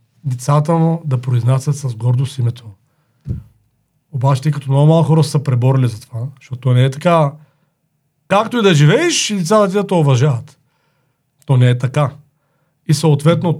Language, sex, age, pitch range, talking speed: Bulgarian, male, 40-59, 135-160 Hz, 150 wpm